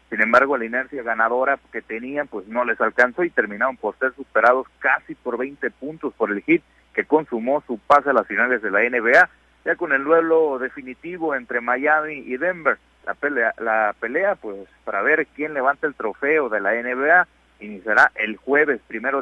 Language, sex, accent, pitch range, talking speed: Spanish, male, Mexican, 110-150 Hz, 185 wpm